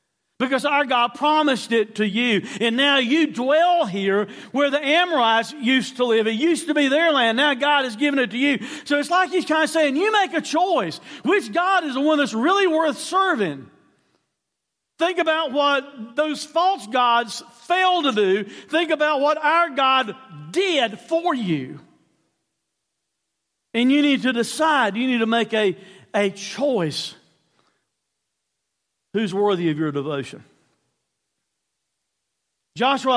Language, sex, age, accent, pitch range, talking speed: English, male, 50-69, American, 205-300 Hz, 155 wpm